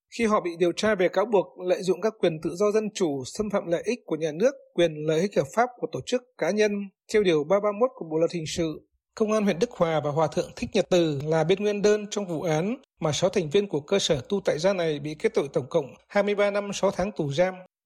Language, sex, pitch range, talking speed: Vietnamese, male, 170-215 Hz, 270 wpm